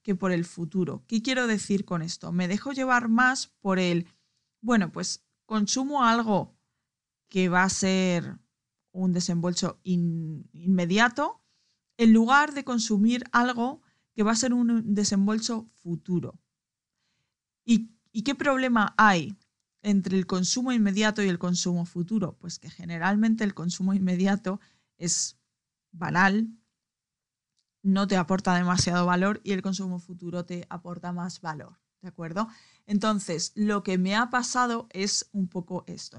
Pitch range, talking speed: 180-225 Hz, 140 wpm